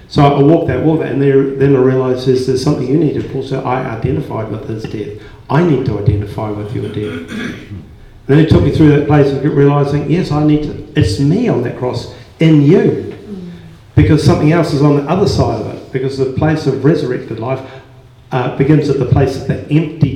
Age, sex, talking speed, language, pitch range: 50-69, male, 225 wpm, English, 120-150 Hz